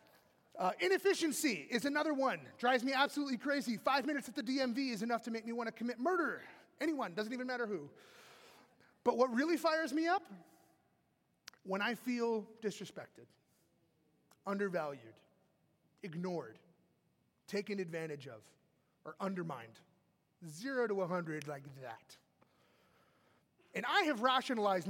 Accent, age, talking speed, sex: American, 30-49, 135 wpm, male